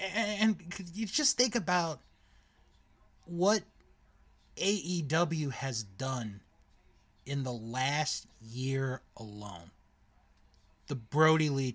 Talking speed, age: 85 wpm, 30-49